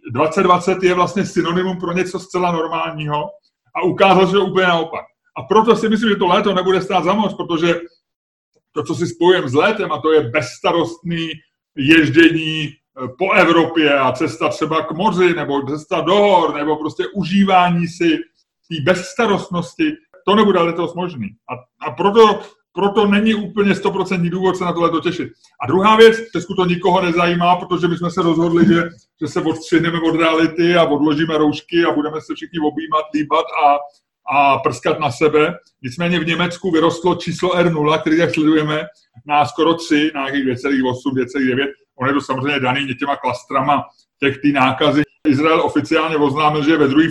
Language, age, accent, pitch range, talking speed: Czech, 30-49, native, 150-180 Hz, 165 wpm